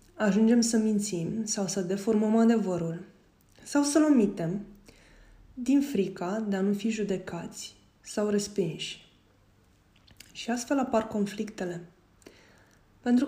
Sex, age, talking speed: female, 20-39, 110 wpm